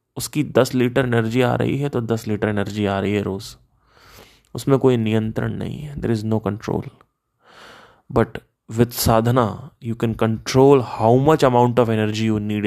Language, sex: Hindi, male